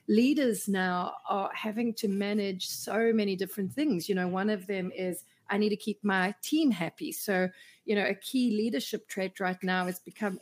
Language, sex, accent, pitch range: English, female, Australian, 185-225 Hz